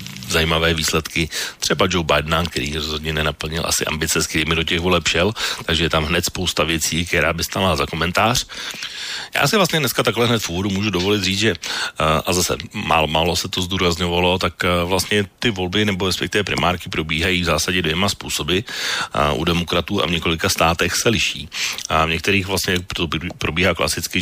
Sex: male